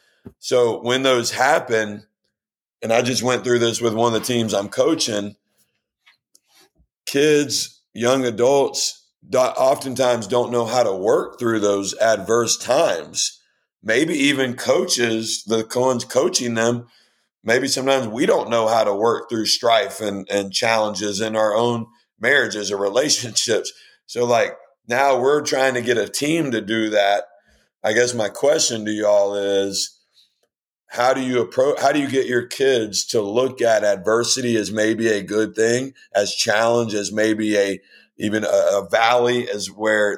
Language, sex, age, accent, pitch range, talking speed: English, male, 50-69, American, 105-125 Hz, 155 wpm